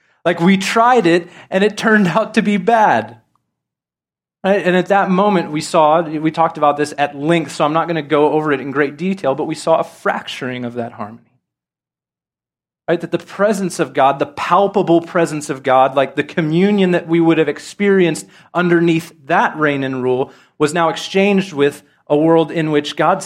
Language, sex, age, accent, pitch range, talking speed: English, male, 30-49, American, 150-195 Hz, 195 wpm